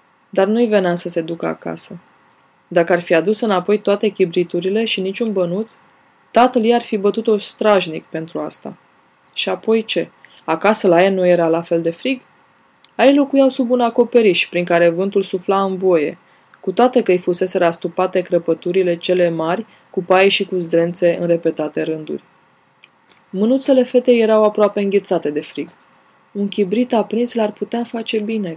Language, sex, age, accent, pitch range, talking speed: Romanian, female, 20-39, native, 180-225 Hz, 170 wpm